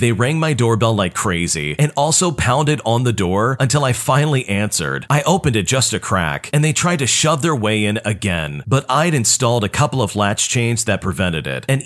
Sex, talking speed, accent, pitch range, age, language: male, 220 wpm, American, 105-140 Hz, 40-59, English